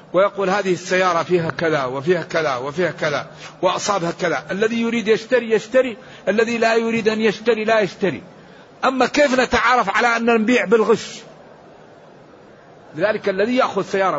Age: 50-69